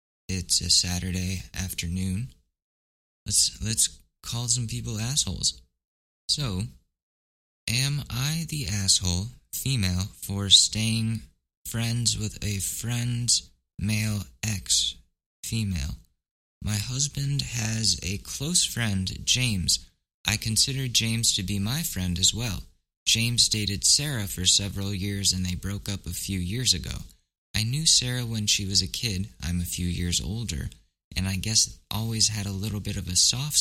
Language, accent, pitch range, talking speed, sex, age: English, American, 90-115 Hz, 140 wpm, male, 20-39